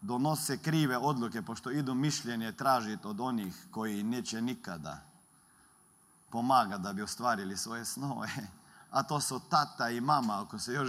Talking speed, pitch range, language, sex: 150 wpm, 140-195 Hz, Croatian, male